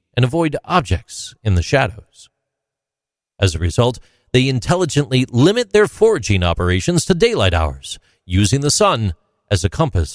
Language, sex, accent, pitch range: English, male, American, 100-160 Hz